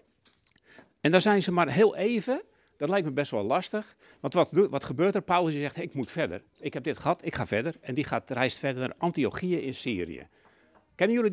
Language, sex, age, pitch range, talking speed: Dutch, male, 60-79, 140-190 Hz, 220 wpm